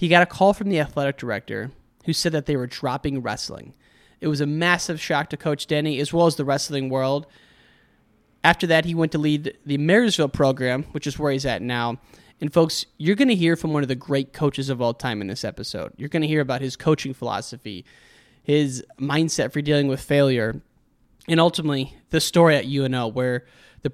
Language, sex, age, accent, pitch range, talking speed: English, male, 20-39, American, 130-160 Hz, 210 wpm